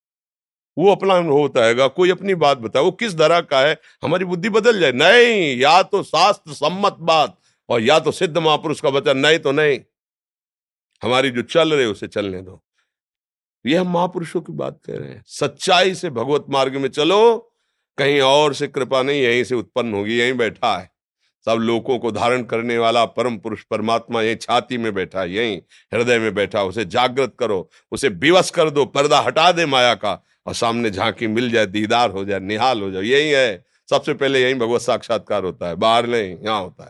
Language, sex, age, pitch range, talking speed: Hindi, male, 50-69, 110-145 Hz, 185 wpm